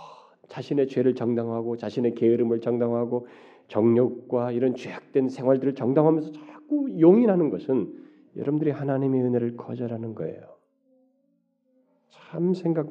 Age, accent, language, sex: 40-59, native, Korean, male